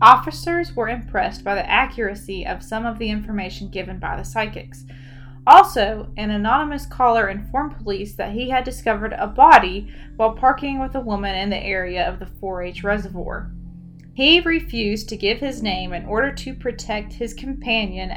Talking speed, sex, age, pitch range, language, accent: 170 wpm, female, 20-39, 185-235 Hz, English, American